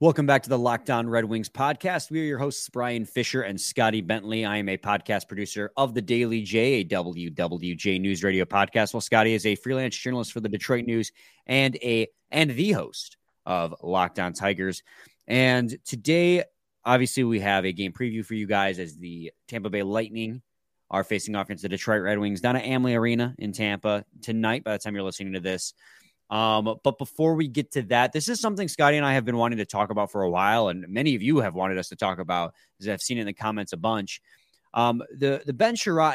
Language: English